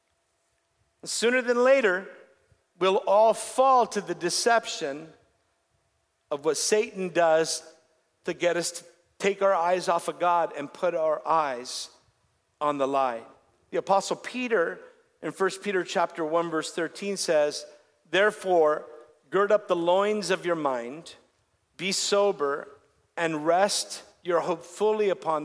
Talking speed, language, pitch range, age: 135 wpm, English, 145-195 Hz, 50-69